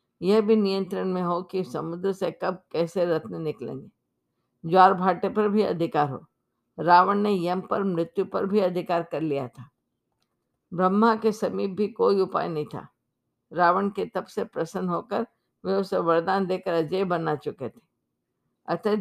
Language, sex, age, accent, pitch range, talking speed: Hindi, female, 50-69, native, 165-200 Hz, 165 wpm